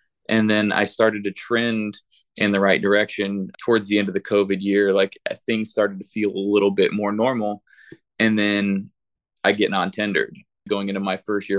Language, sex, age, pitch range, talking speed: English, male, 20-39, 100-110 Hz, 190 wpm